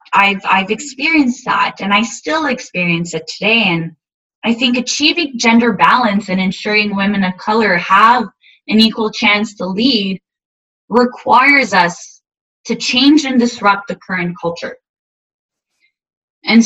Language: English